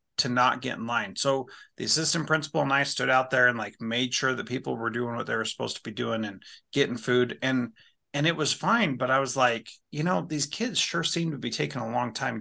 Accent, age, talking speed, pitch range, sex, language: American, 30-49, 255 wpm, 125-160 Hz, male, English